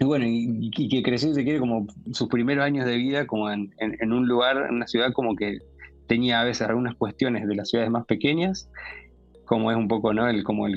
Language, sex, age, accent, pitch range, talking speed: Spanish, male, 20-39, Argentinian, 105-120 Hz, 235 wpm